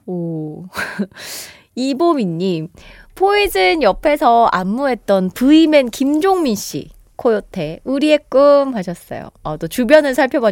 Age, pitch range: 20-39, 180-285 Hz